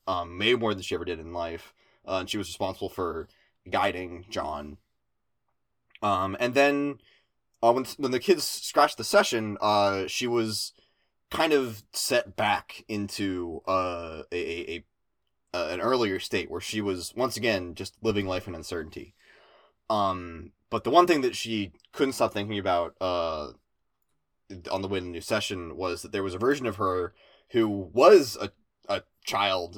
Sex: male